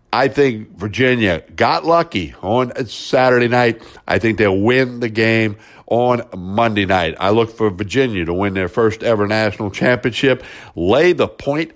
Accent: American